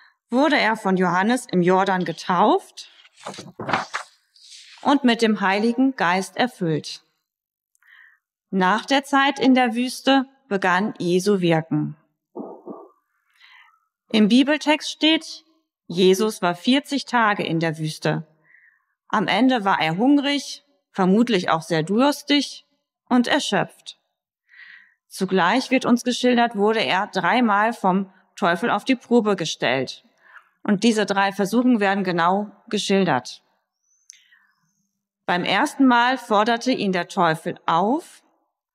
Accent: German